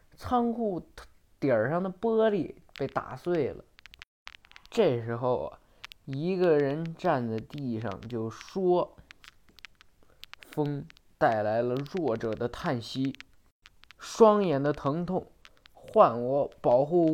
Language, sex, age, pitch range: Chinese, male, 20-39, 125-180 Hz